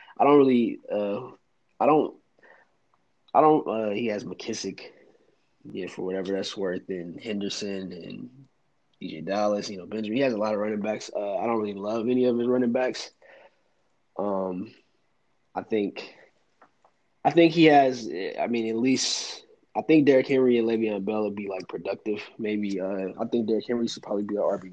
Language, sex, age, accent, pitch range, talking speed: English, male, 20-39, American, 100-115 Hz, 180 wpm